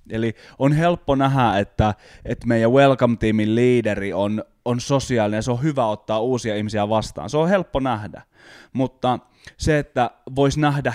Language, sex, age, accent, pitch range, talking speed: Finnish, male, 20-39, native, 110-145 Hz, 160 wpm